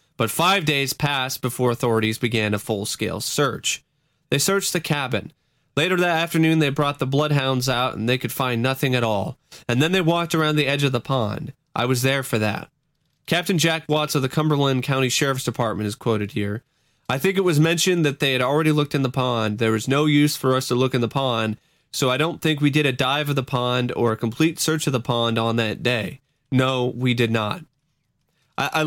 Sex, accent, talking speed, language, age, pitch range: male, American, 220 wpm, English, 30-49, 120-150 Hz